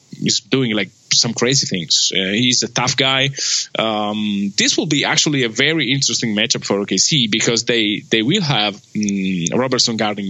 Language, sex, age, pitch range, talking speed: English, male, 20-39, 110-135 Hz, 175 wpm